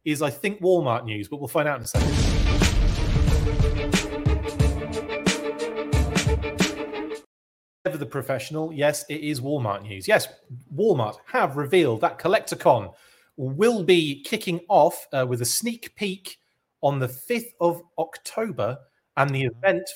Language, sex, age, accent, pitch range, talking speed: English, male, 30-49, British, 110-160 Hz, 130 wpm